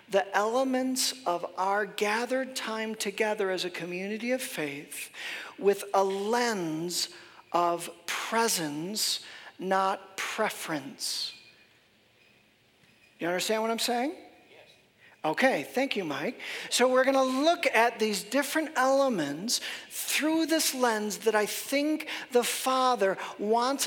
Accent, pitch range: American, 215-275 Hz